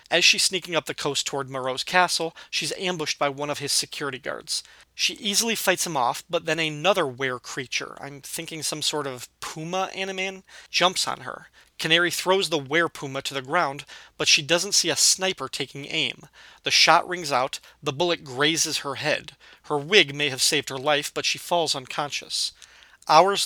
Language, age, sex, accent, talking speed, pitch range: English, 40-59, male, American, 185 wpm, 140-175 Hz